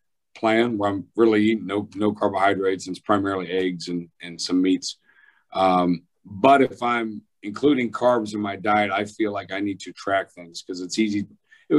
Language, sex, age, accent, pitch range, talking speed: English, male, 40-59, American, 100-120 Hz, 190 wpm